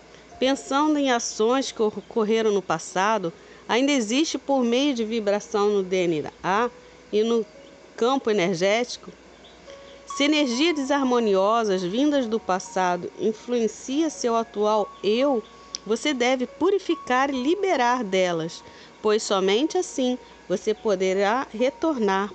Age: 40-59